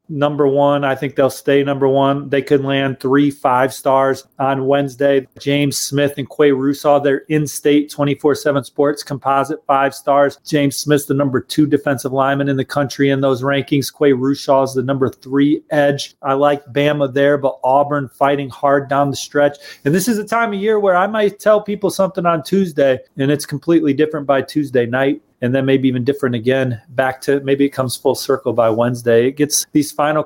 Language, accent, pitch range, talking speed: English, American, 135-150 Hz, 200 wpm